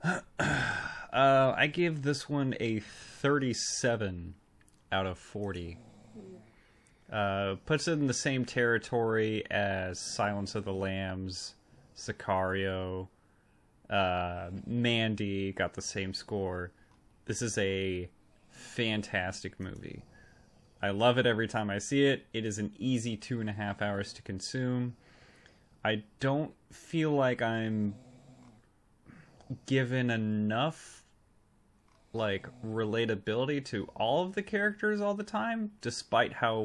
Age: 30-49